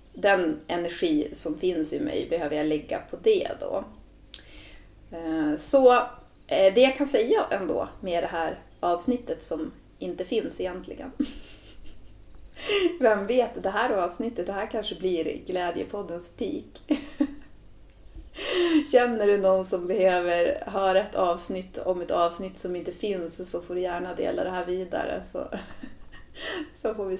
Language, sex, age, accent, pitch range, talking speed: Swedish, female, 30-49, native, 170-245 Hz, 135 wpm